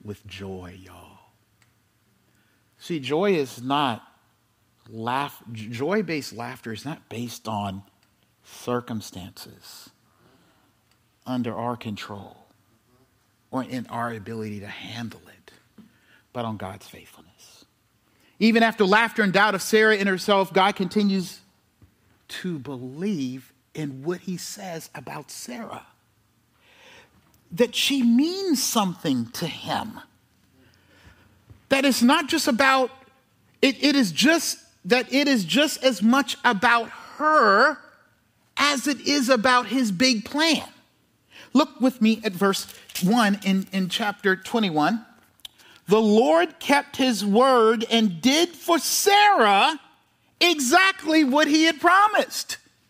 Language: English